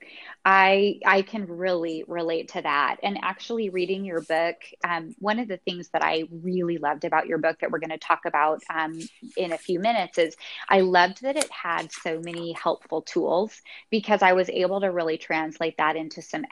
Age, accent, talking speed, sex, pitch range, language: 20-39, American, 200 wpm, female, 165-200 Hz, English